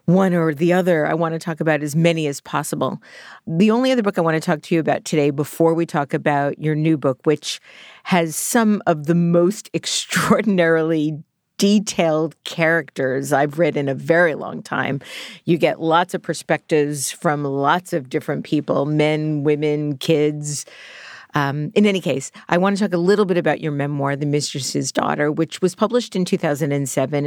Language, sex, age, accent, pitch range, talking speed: English, female, 50-69, American, 145-175 Hz, 185 wpm